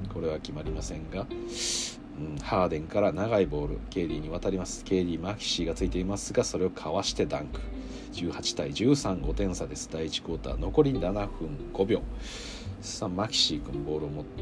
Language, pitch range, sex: Japanese, 80-100 Hz, male